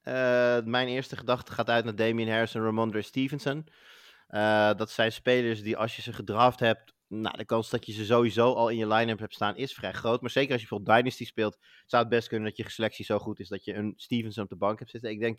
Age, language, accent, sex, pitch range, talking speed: 30-49, Dutch, Dutch, male, 110-125 Hz, 255 wpm